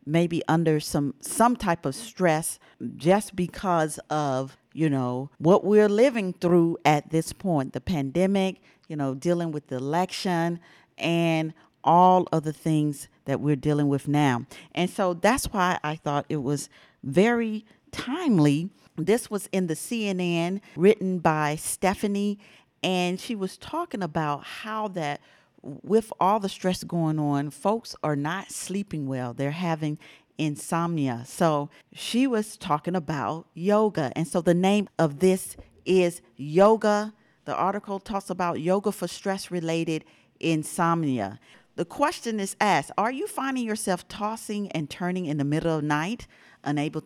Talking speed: 145 wpm